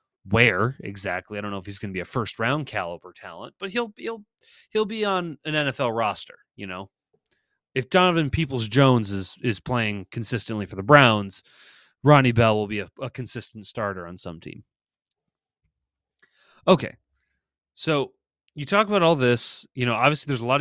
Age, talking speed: 30-49, 175 wpm